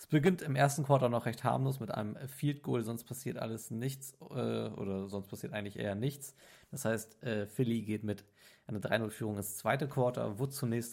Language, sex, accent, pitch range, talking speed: German, male, German, 105-130 Hz, 200 wpm